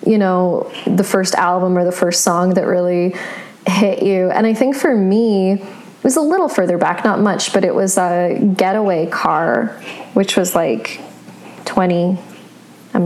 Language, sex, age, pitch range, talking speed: English, female, 20-39, 185-230 Hz, 170 wpm